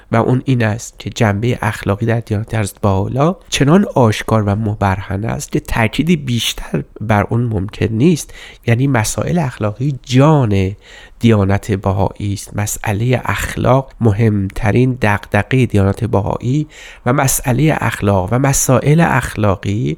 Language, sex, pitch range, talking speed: Persian, male, 105-135 Hz, 125 wpm